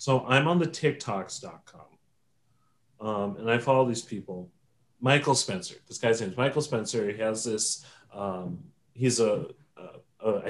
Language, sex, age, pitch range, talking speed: English, male, 30-49, 100-130 Hz, 145 wpm